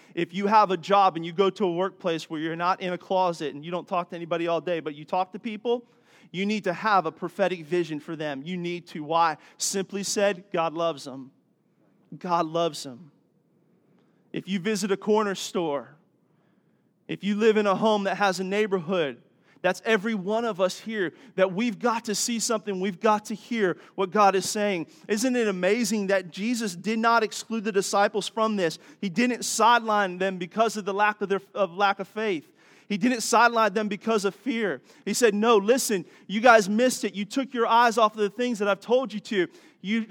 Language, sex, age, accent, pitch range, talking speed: English, male, 30-49, American, 195-235 Hz, 215 wpm